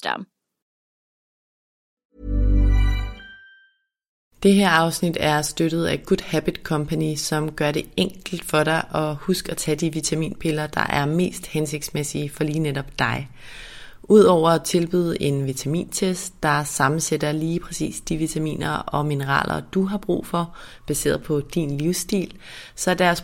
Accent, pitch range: native, 150-175 Hz